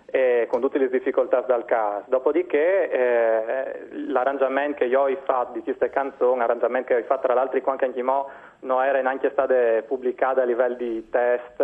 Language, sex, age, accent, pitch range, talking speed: Italian, male, 20-39, native, 120-160 Hz, 175 wpm